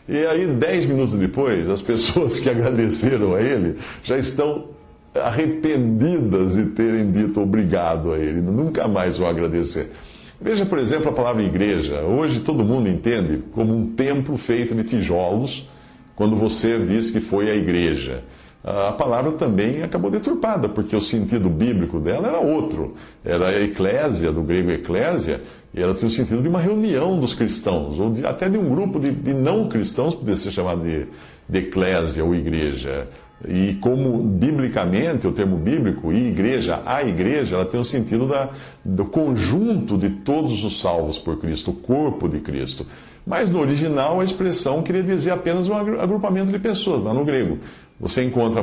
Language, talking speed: Portuguese, 165 wpm